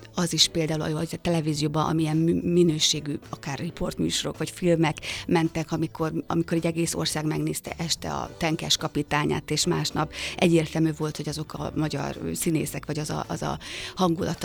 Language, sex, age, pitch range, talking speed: Hungarian, female, 30-49, 160-180 Hz, 160 wpm